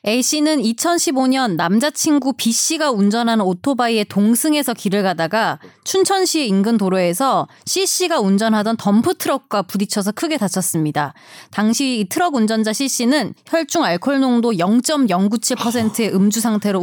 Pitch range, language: 205-295 Hz, Korean